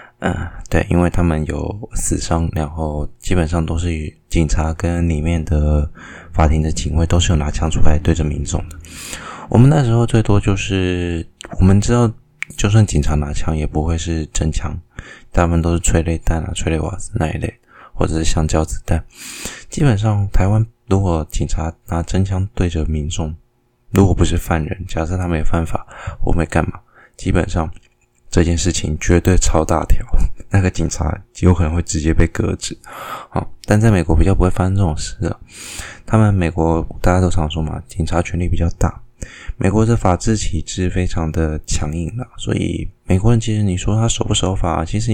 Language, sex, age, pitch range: Chinese, male, 20-39, 80-100 Hz